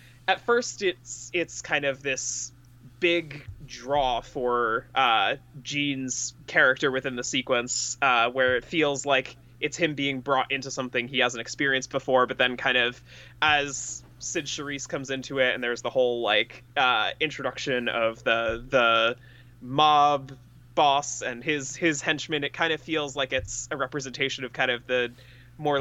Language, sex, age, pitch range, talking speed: English, male, 20-39, 125-150 Hz, 165 wpm